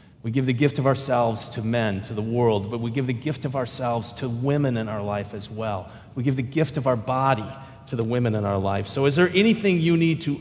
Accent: American